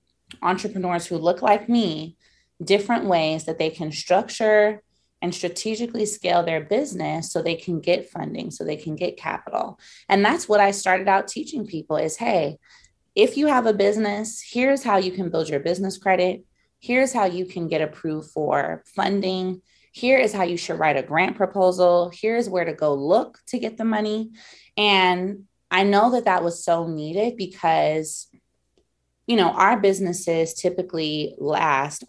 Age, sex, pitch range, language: 20-39, female, 160-200 Hz, English